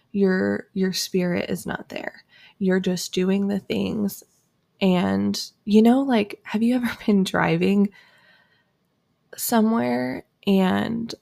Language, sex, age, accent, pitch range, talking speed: English, female, 20-39, American, 180-205 Hz, 120 wpm